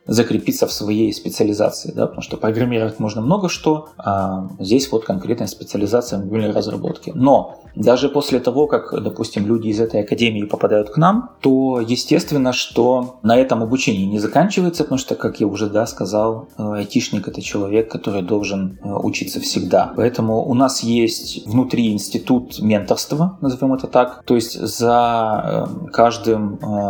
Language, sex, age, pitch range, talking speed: Russian, male, 20-39, 105-125 Hz, 145 wpm